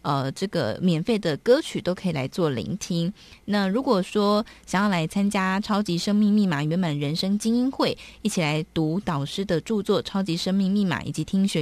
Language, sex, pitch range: Chinese, female, 170-205 Hz